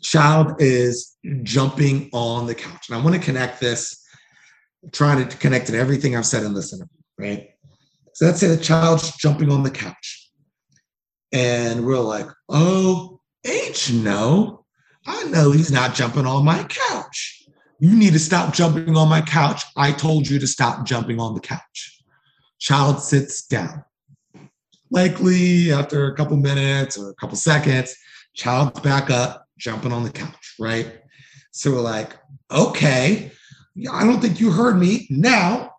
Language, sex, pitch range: English, male, 125-170 Hz